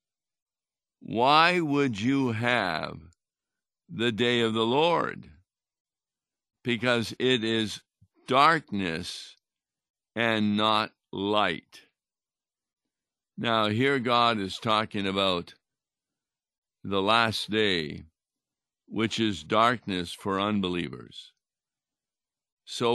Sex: male